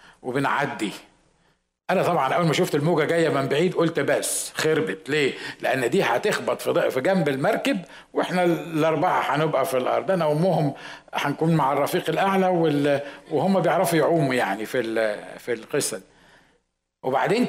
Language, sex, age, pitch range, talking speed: Arabic, male, 60-79, 140-180 Hz, 135 wpm